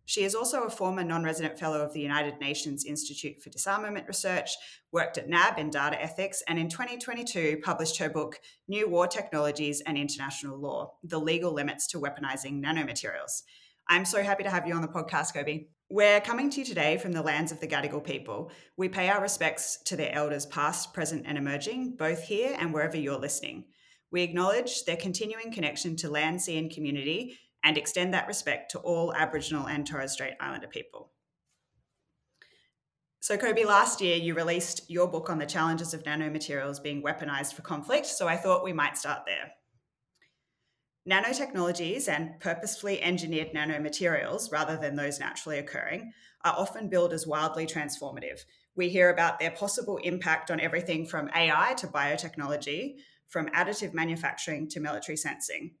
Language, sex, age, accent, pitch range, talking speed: English, female, 20-39, Australian, 150-185 Hz, 170 wpm